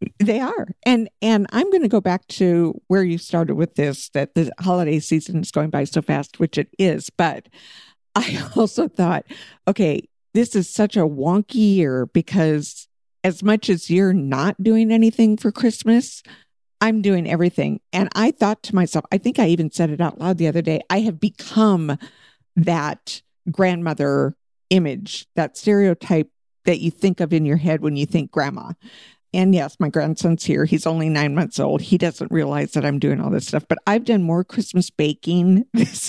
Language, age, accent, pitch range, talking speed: English, 50-69, American, 160-200 Hz, 185 wpm